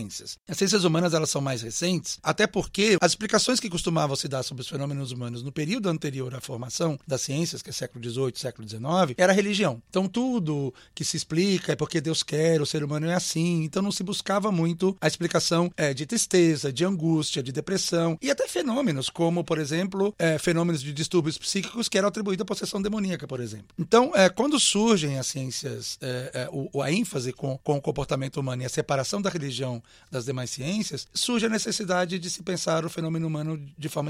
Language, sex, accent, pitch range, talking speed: Portuguese, male, Brazilian, 145-195 Hz, 205 wpm